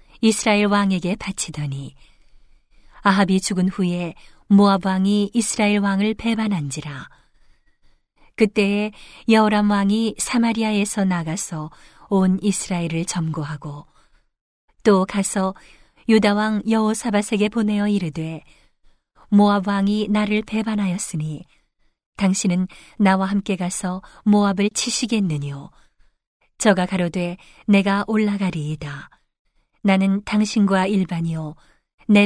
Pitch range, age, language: 180-210 Hz, 40-59, Korean